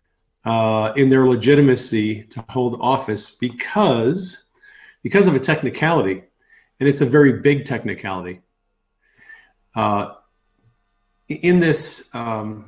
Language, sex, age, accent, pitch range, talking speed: English, male, 40-59, American, 110-140 Hz, 110 wpm